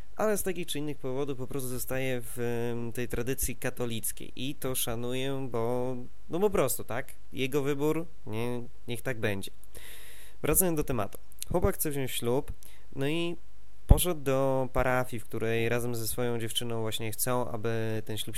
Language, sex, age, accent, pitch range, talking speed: Polish, male, 20-39, native, 115-140 Hz, 160 wpm